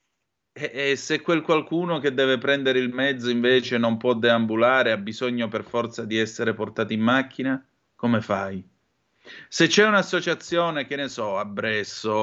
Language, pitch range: Italian, 110-135 Hz